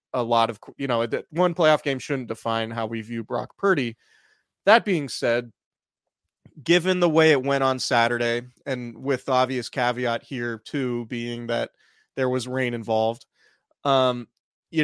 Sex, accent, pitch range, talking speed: male, American, 120-145 Hz, 160 wpm